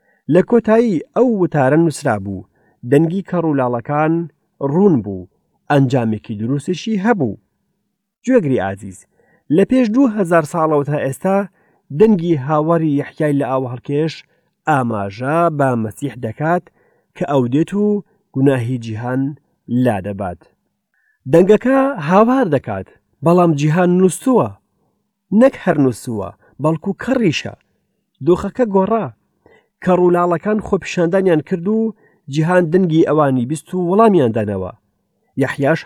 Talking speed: 110 wpm